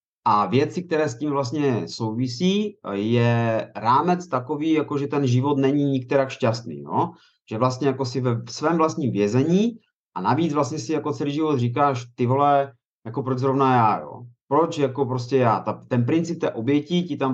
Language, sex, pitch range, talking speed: Czech, male, 120-140 Hz, 180 wpm